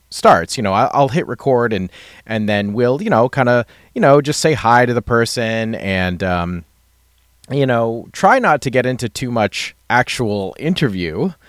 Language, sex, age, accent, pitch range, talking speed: English, male, 30-49, American, 105-145 Hz, 185 wpm